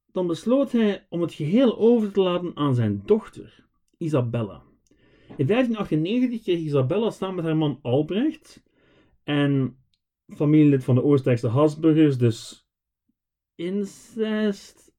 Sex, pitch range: male, 125-210 Hz